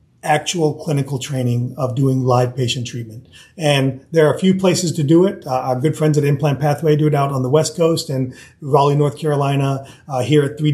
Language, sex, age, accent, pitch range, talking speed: English, male, 30-49, American, 130-150 Hz, 220 wpm